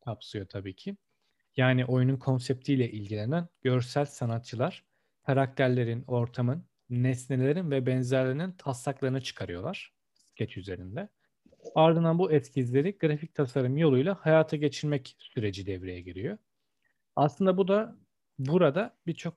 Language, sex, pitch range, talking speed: Turkish, male, 120-155 Hz, 105 wpm